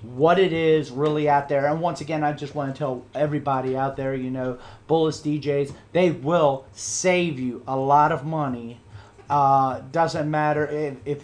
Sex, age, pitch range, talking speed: male, 40-59, 125-155 Hz, 180 wpm